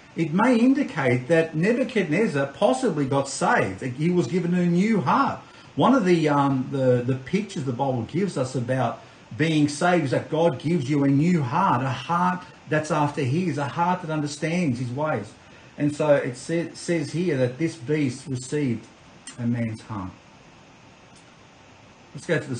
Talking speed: 170 wpm